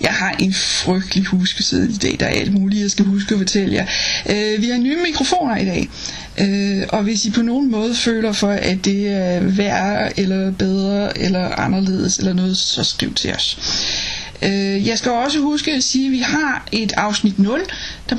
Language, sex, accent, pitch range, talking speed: Danish, female, native, 195-260 Hz, 200 wpm